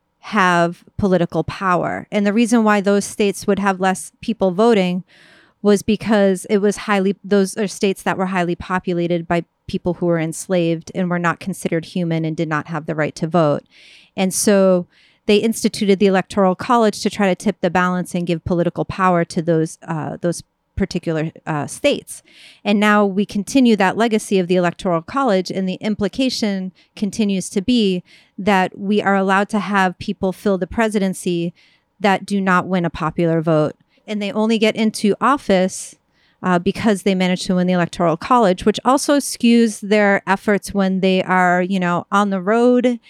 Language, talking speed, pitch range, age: English, 180 wpm, 180-210 Hz, 30-49